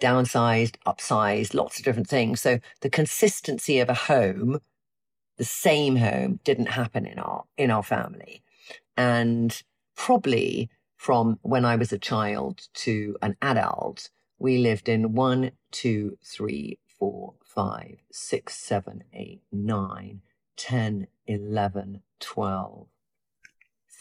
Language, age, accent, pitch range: English, 40-59, British, 120-165 Hz